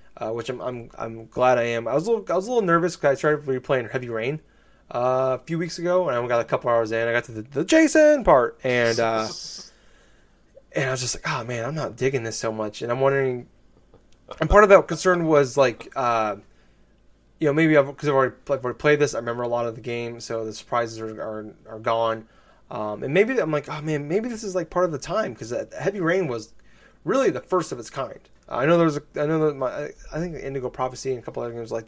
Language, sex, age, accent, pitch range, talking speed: English, male, 20-39, American, 115-145 Hz, 255 wpm